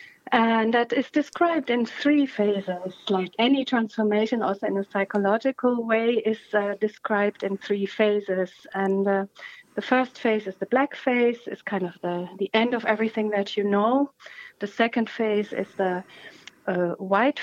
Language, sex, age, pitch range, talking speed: English, female, 40-59, 195-230 Hz, 165 wpm